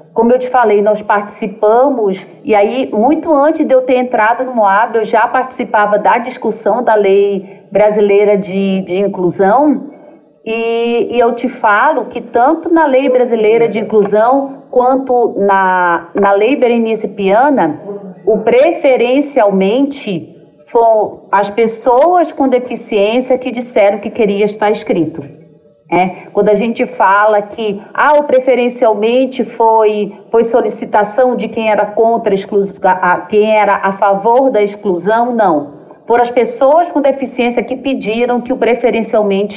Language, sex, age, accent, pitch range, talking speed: Portuguese, female, 40-59, Brazilian, 200-250 Hz, 145 wpm